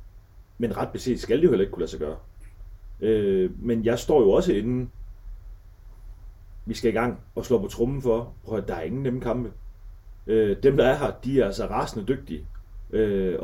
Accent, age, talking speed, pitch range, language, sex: native, 30-49, 200 wpm, 95-120 Hz, Danish, male